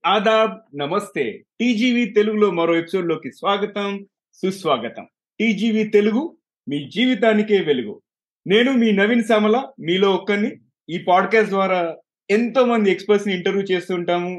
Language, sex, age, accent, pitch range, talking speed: Telugu, male, 30-49, native, 170-215 Hz, 120 wpm